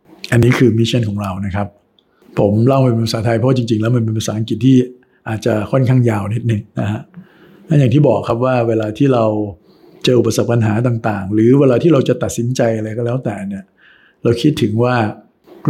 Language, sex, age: Thai, male, 60-79